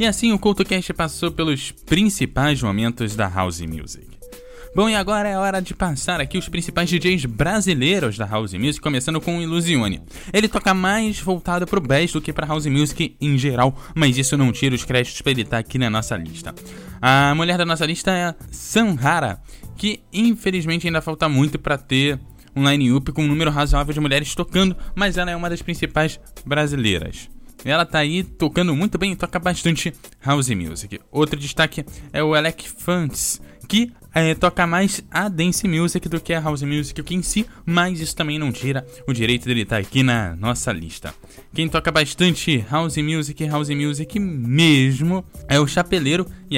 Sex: male